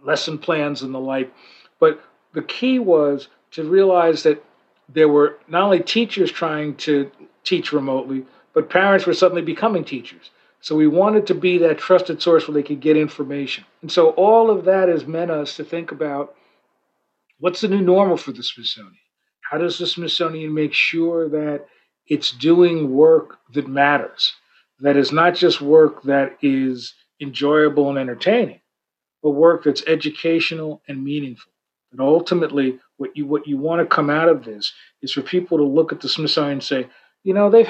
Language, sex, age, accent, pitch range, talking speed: English, male, 50-69, American, 140-170 Hz, 175 wpm